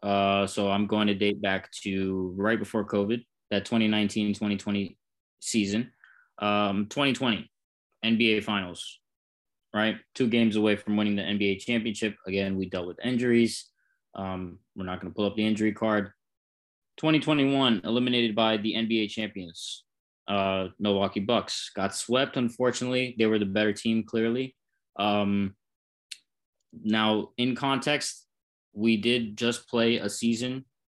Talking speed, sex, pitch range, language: 135 wpm, male, 100-115 Hz, English